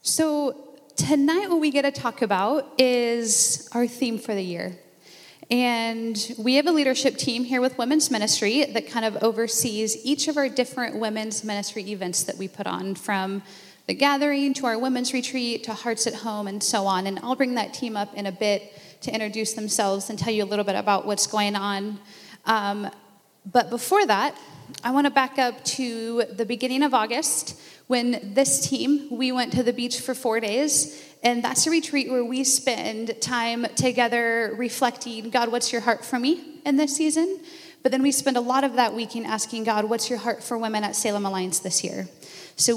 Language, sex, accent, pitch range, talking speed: English, female, American, 215-265 Hz, 200 wpm